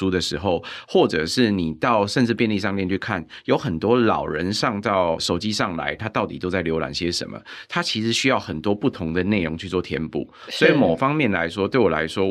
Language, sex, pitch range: Chinese, male, 90-115 Hz